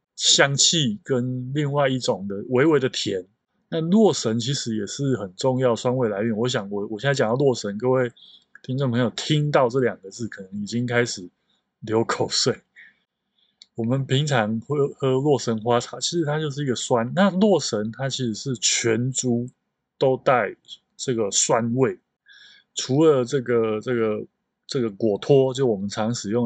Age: 20-39